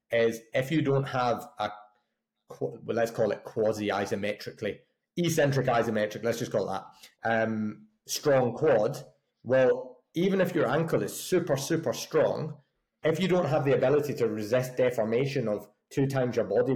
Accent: British